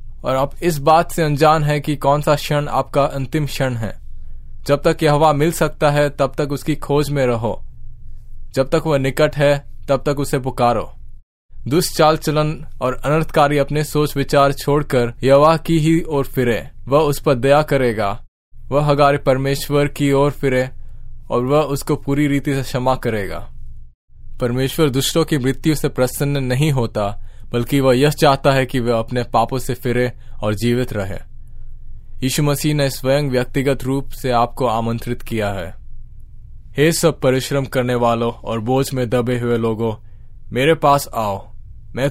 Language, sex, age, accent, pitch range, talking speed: Hindi, male, 10-29, native, 115-145 Hz, 165 wpm